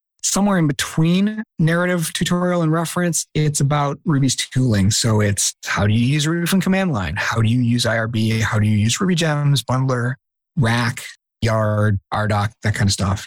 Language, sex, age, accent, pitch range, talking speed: English, male, 30-49, American, 110-140 Hz, 180 wpm